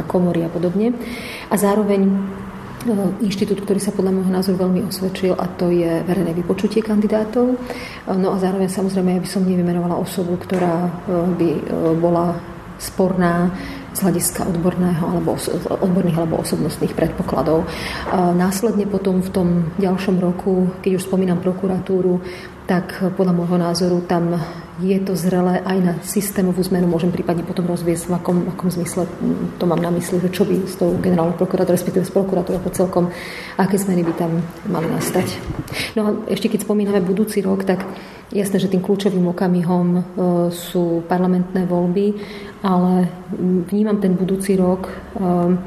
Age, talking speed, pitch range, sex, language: 40-59, 150 wpm, 175-195 Hz, female, Slovak